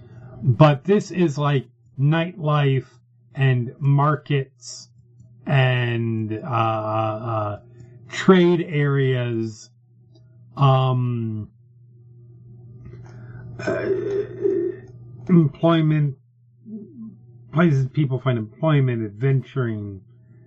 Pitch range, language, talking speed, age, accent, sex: 120-135 Hz, English, 60 wpm, 30-49, American, male